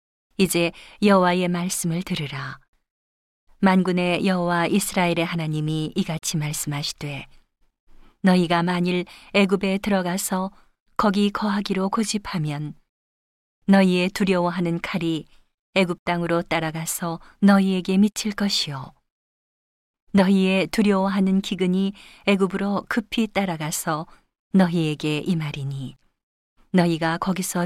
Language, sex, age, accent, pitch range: Korean, female, 40-59, native, 165-195 Hz